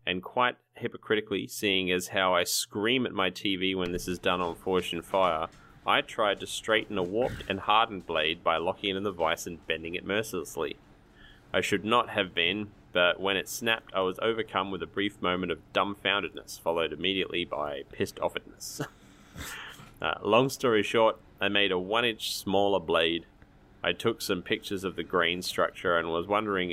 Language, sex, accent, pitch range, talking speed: English, male, Australian, 90-110 Hz, 180 wpm